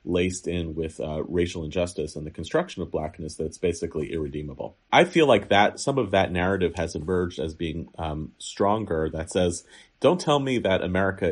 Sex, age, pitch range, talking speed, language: male, 30-49, 80-95 Hz, 185 wpm, English